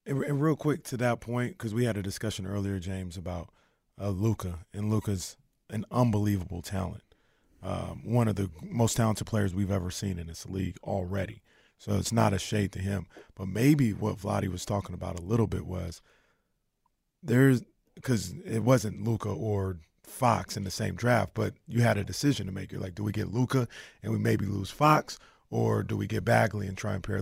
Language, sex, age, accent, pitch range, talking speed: English, male, 30-49, American, 100-120 Hz, 200 wpm